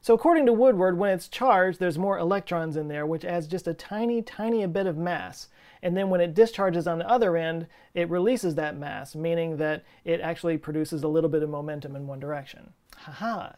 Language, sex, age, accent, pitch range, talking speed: English, male, 30-49, American, 150-195 Hz, 210 wpm